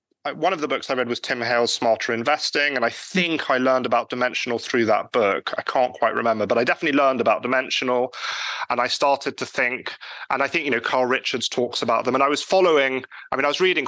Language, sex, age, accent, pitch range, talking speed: English, male, 30-49, British, 110-135 Hz, 240 wpm